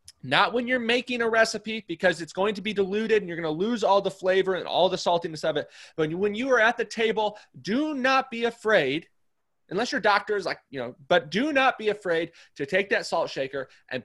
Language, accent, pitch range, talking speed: English, American, 155-220 Hz, 240 wpm